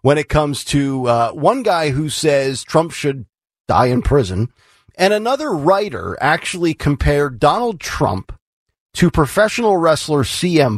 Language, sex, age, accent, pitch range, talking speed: English, male, 40-59, American, 125-175 Hz, 140 wpm